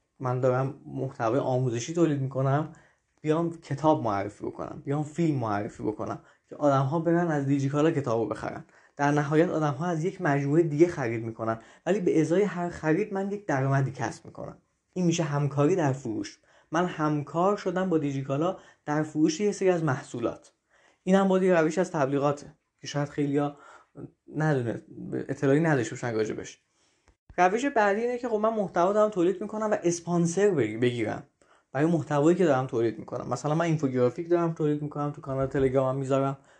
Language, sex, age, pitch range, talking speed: Persian, male, 20-39, 135-175 Hz, 155 wpm